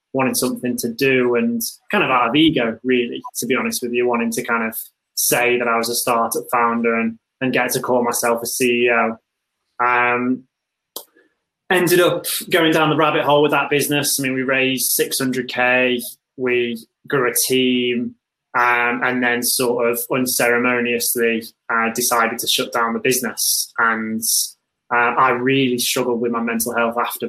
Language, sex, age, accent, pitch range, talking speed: English, male, 20-39, British, 120-135 Hz, 170 wpm